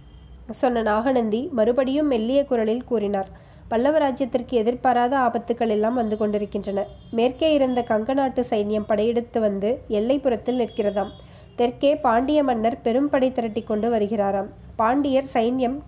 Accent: native